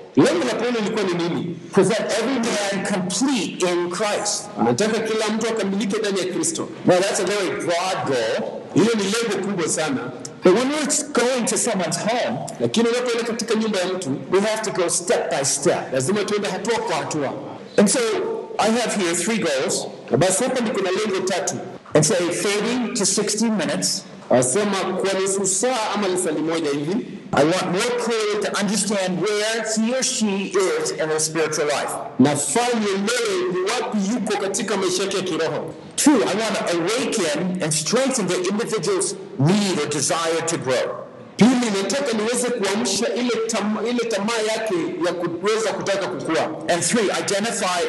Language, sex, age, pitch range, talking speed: Swahili, male, 60-79, 185-230 Hz, 100 wpm